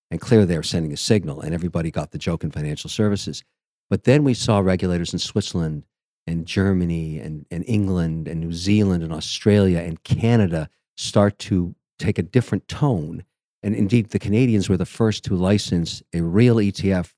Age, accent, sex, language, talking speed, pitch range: 50-69, American, male, English, 180 wpm, 85-110 Hz